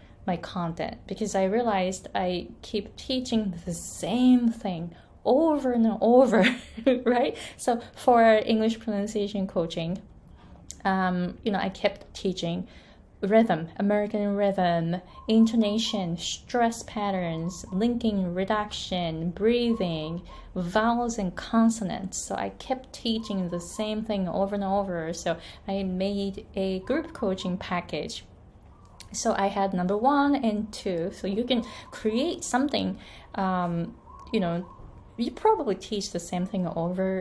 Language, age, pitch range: Japanese, 20-39, 180-230 Hz